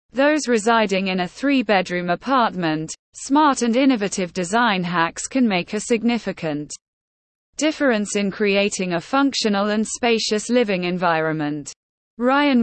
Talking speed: 125 wpm